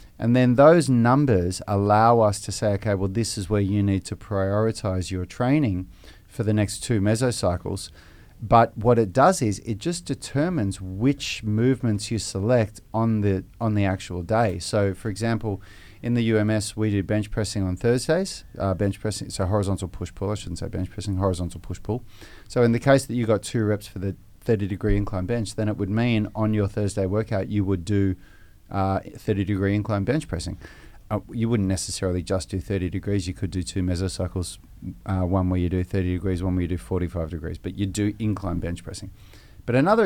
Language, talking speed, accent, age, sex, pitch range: English, 200 wpm, Australian, 40-59, male, 95-110 Hz